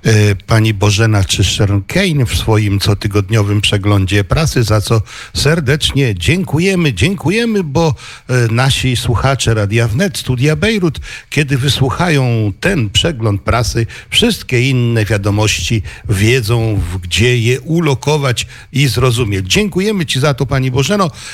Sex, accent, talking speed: male, native, 120 wpm